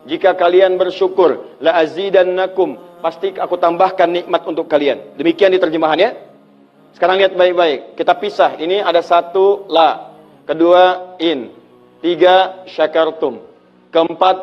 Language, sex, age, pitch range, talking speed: Indonesian, male, 40-59, 170-225 Hz, 115 wpm